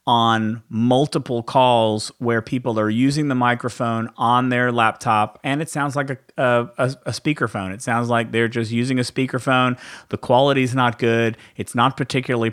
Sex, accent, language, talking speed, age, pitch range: male, American, English, 170 wpm, 40-59, 110-130 Hz